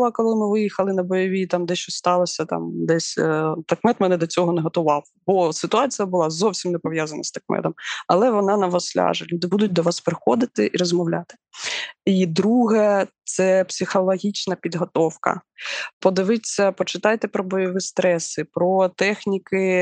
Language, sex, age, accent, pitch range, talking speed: Ukrainian, female, 20-39, native, 175-205 Hz, 150 wpm